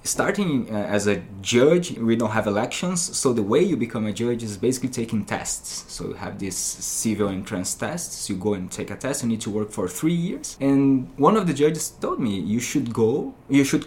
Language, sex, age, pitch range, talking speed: English, male, 20-39, 105-145 Hz, 225 wpm